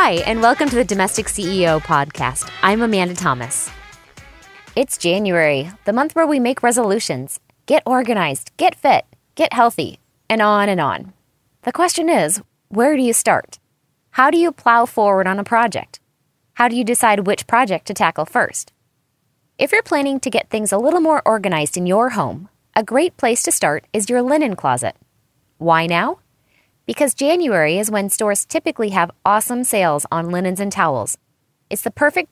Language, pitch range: English, 170-250 Hz